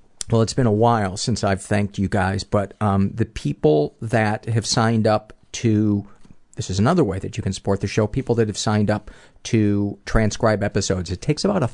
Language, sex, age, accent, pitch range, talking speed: English, male, 40-59, American, 105-150 Hz, 210 wpm